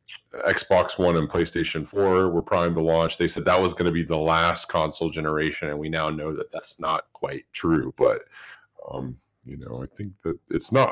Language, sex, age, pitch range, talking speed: English, male, 30-49, 85-95 Hz, 210 wpm